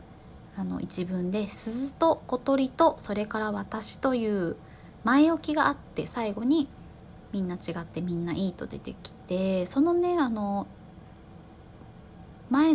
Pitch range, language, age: 180-255 Hz, Japanese, 20-39